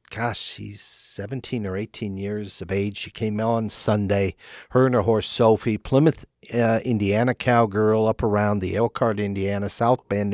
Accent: American